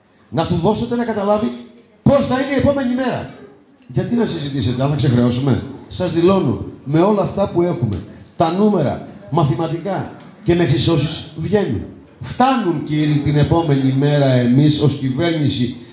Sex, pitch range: male, 110-155 Hz